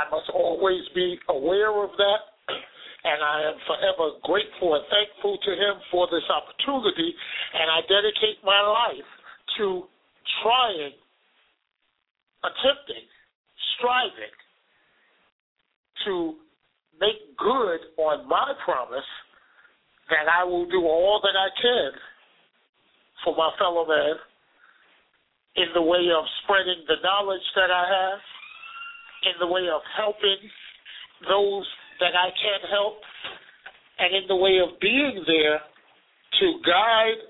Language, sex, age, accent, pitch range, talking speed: English, male, 50-69, American, 175-215 Hz, 120 wpm